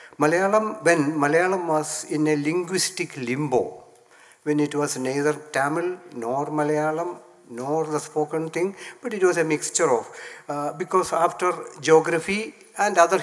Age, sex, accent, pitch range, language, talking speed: 60-79, male, native, 140-180 Hz, Tamil, 140 wpm